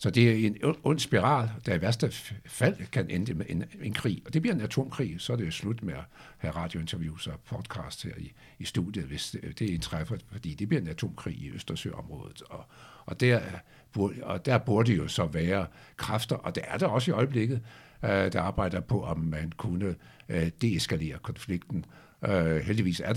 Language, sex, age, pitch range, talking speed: Danish, male, 60-79, 90-125 Hz, 200 wpm